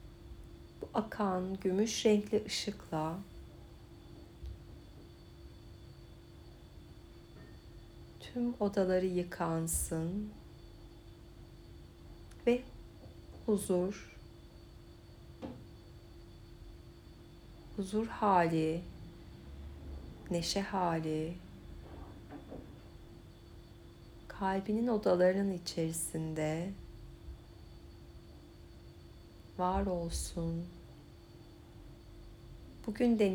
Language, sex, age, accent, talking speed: Turkish, female, 60-79, native, 35 wpm